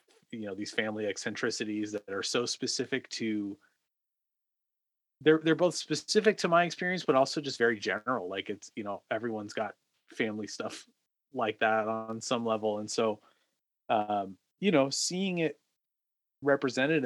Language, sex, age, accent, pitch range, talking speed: English, male, 30-49, American, 100-140 Hz, 150 wpm